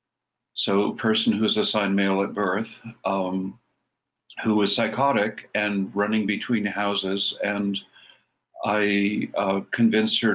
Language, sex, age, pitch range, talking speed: English, male, 50-69, 100-115 Hz, 130 wpm